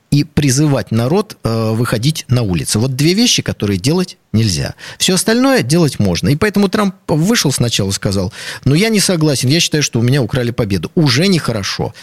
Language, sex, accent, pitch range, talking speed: Russian, male, native, 125-175 Hz, 185 wpm